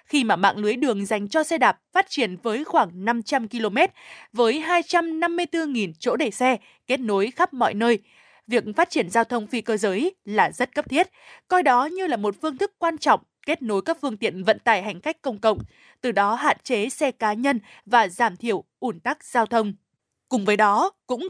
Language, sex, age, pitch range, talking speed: Vietnamese, female, 20-39, 215-300 Hz, 210 wpm